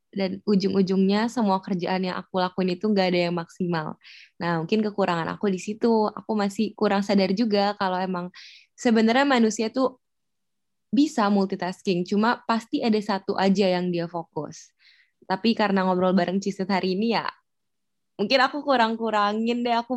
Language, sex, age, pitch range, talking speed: Indonesian, female, 20-39, 190-225 Hz, 155 wpm